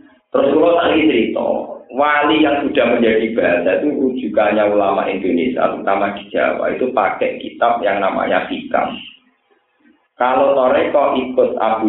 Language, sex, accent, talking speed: Indonesian, male, native, 125 wpm